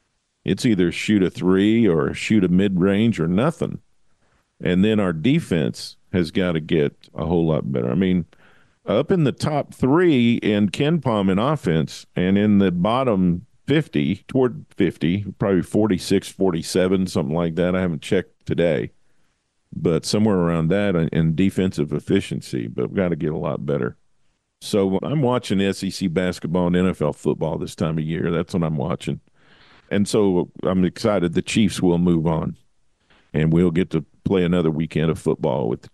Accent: American